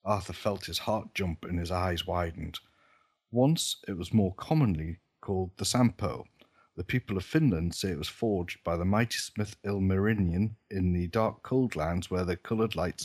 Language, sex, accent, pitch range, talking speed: English, male, British, 85-105 Hz, 180 wpm